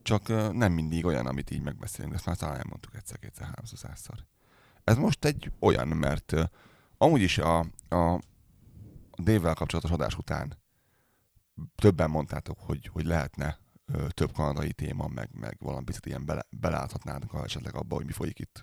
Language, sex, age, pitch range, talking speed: Hungarian, male, 30-49, 80-105 Hz, 160 wpm